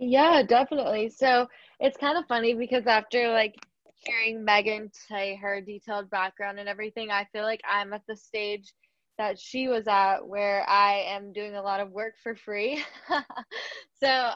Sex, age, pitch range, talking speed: female, 10-29, 195-230 Hz, 165 wpm